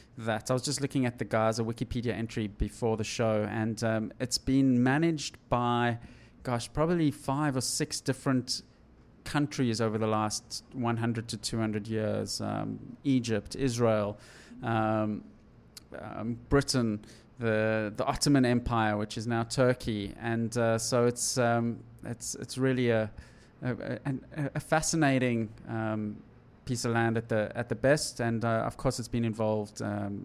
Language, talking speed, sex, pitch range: English, 160 wpm, male, 110-135 Hz